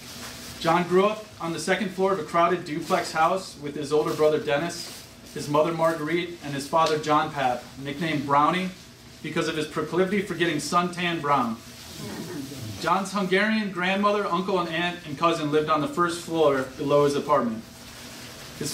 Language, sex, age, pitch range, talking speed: English, male, 30-49, 145-180 Hz, 165 wpm